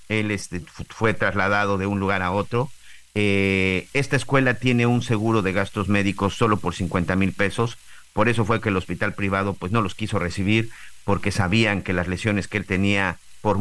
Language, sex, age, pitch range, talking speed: Spanish, male, 50-69, 90-115 Hz, 195 wpm